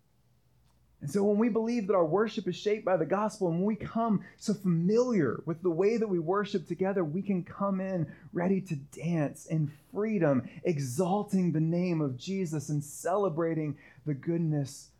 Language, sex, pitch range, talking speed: English, male, 150-220 Hz, 175 wpm